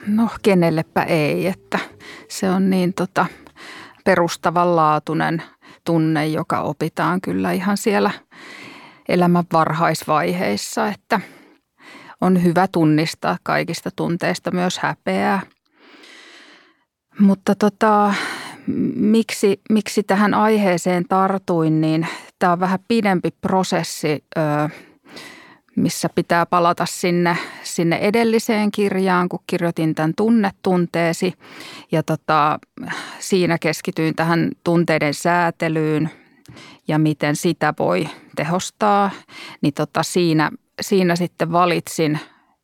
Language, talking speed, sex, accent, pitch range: Finnish, 90 wpm, female, native, 160-195 Hz